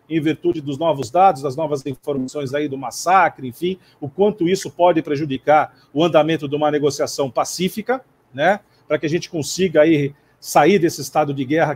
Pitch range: 150-190 Hz